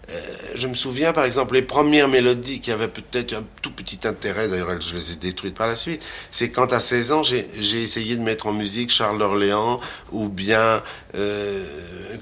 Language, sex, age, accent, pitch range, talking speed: French, male, 50-69, French, 105-150 Hz, 200 wpm